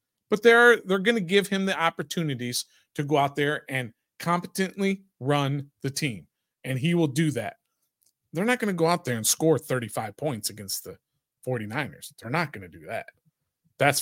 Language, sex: English, male